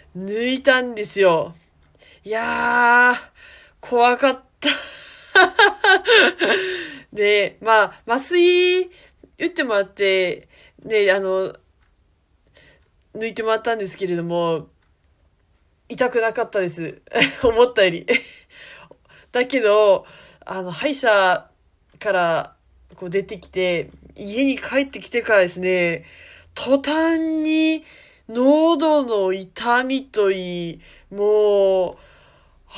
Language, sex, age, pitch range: Japanese, female, 20-39, 195-290 Hz